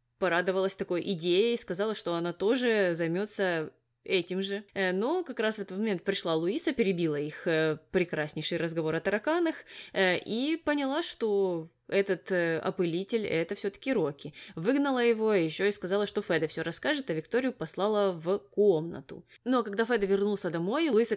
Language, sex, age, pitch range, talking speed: Russian, female, 20-39, 170-220 Hz, 155 wpm